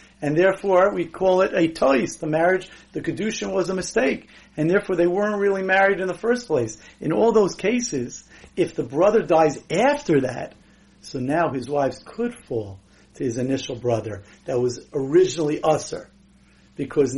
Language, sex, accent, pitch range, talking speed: English, male, American, 130-180 Hz, 170 wpm